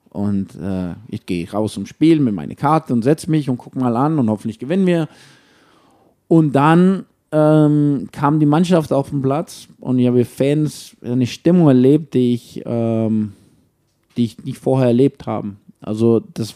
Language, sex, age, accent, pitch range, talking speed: German, male, 50-69, German, 120-150 Hz, 175 wpm